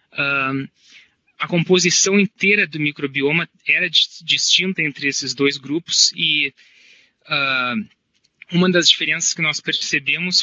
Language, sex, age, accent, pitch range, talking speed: Portuguese, male, 20-39, Brazilian, 145-170 Hz, 115 wpm